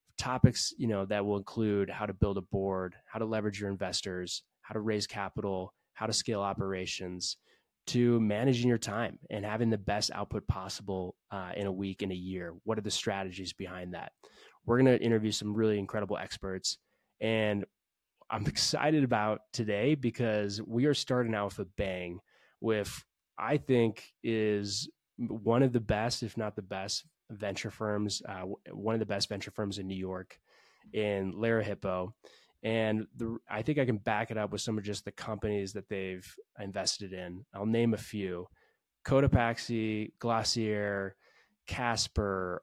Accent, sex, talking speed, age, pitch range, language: American, male, 170 wpm, 20-39, 95-115 Hz, English